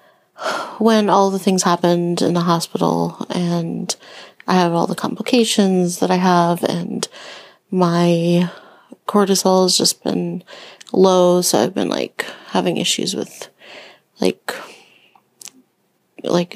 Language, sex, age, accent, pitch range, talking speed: English, female, 30-49, American, 175-195 Hz, 120 wpm